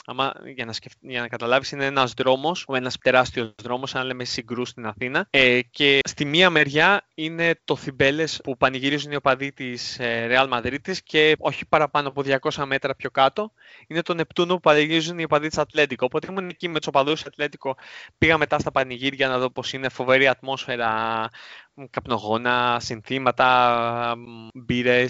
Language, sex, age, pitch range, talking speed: Greek, male, 20-39, 125-155 Hz, 165 wpm